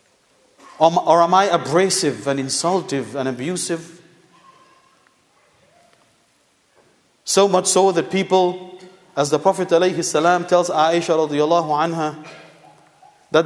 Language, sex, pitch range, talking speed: English, male, 150-195 Hz, 100 wpm